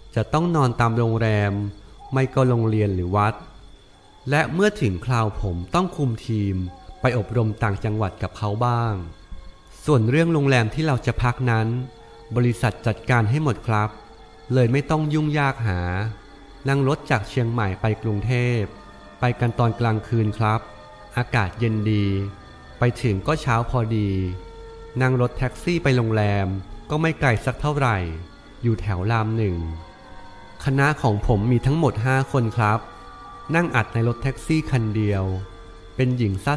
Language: Thai